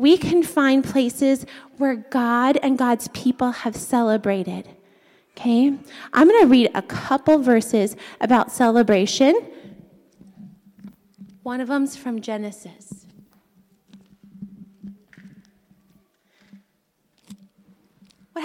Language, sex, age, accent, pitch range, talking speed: English, female, 30-49, American, 240-355 Hz, 85 wpm